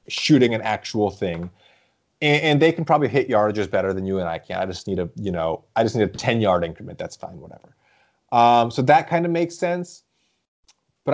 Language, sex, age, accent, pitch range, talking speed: English, male, 30-49, American, 105-140 Hz, 220 wpm